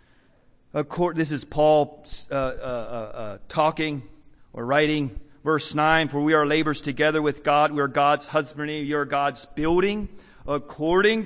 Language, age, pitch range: English, 40-59, 130-155 Hz